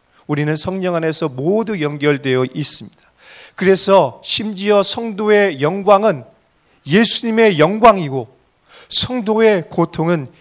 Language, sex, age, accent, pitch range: Korean, male, 30-49, native, 170-230 Hz